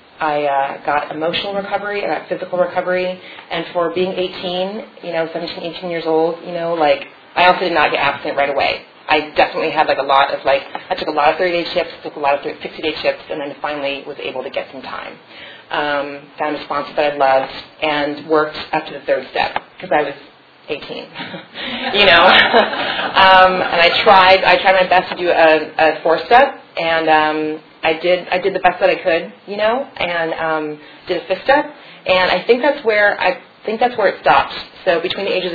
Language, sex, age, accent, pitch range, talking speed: English, female, 30-49, American, 160-190 Hz, 210 wpm